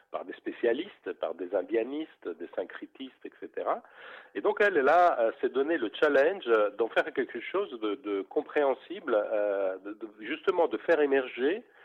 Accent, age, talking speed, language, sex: French, 50-69, 170 wpm, French, male